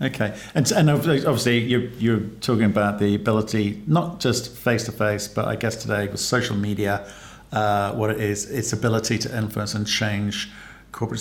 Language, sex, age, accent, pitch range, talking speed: English, male, 50-69, British, 105-145 Hz, 165 wpm